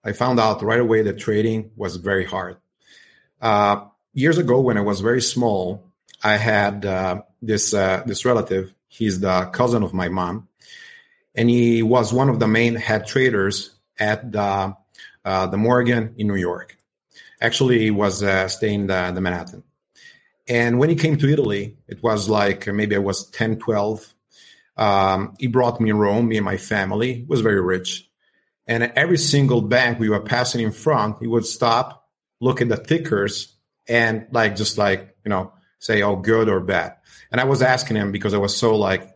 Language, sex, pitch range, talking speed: English, male, 100-120 Hz, 185 wpm